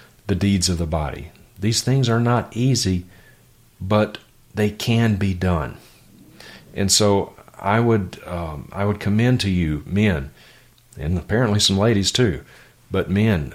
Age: 40-59